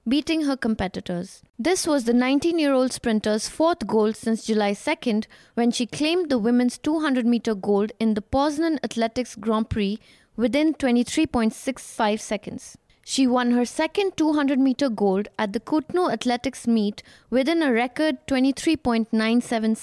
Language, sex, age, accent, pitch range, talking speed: English, female, 20-39, Indian, 220-280 Hz, 135 wpm